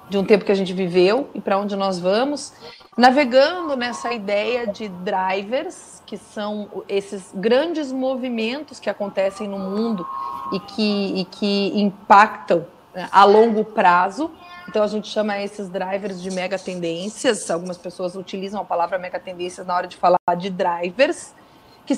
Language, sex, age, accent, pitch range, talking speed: Portuguese, female, 30-49, Brazilian, 195-250 Hz, 155 wpm